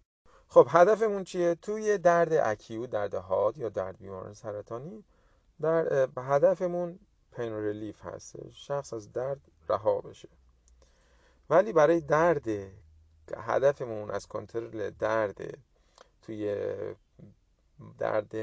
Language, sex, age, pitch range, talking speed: Persian, male, 30-49, 105-180 Hz, 100 wpm